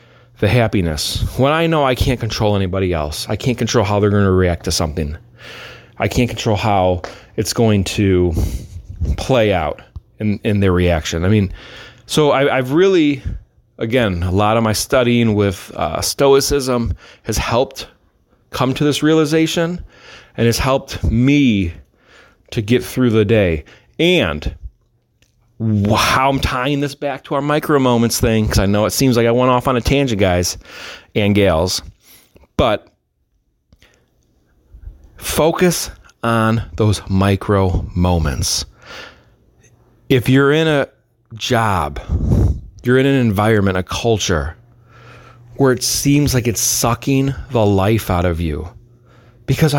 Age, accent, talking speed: 30-49, American, 140 wpm